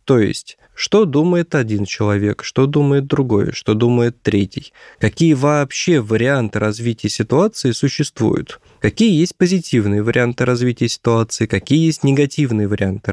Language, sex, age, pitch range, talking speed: Russian, male, 20-39, 115-145 Hz, 130 wpm